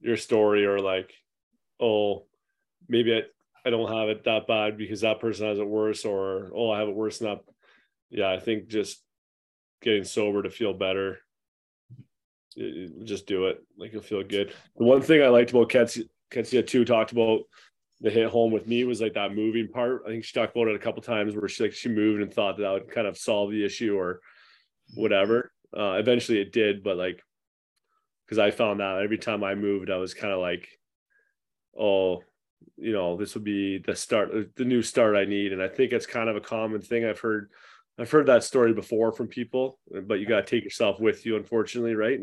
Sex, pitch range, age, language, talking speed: male, 100-115 Hz, 20-39, English, 215 wpm